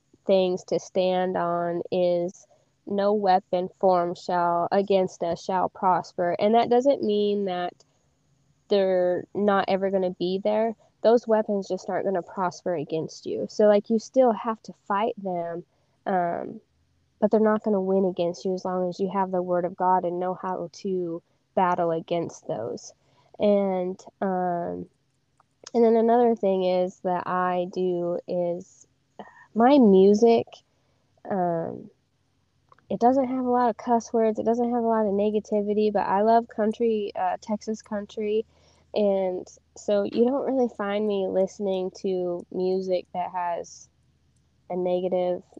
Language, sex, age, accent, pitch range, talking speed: English, female, 20-39, American, 175-210 Hz, 155 wpm